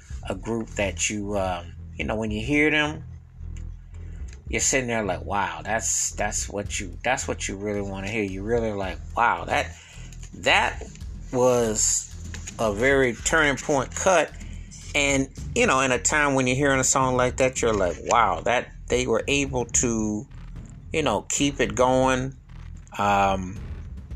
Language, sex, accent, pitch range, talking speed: English, male, American, 85-120 Hz, 165 wpm